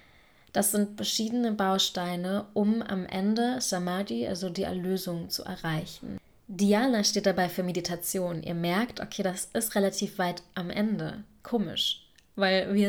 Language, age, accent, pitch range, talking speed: German, 20-39, German, 180-205 Hz, 140 wpm